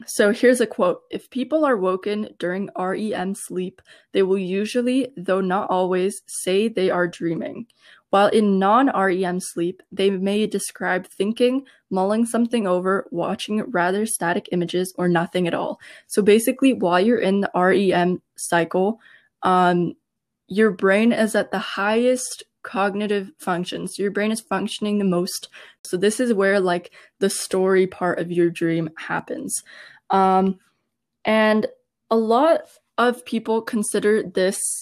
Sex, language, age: female, English, 20-39